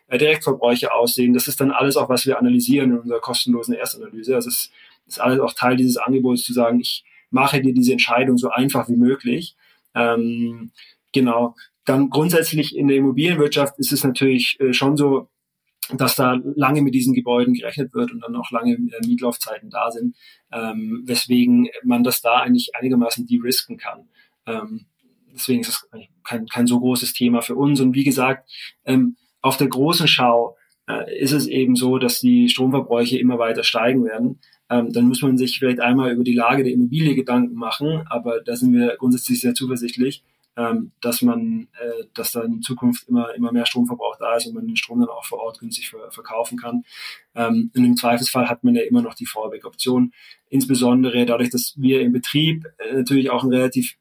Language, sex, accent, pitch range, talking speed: German, male, German, 120-150 Hz, 190 wpm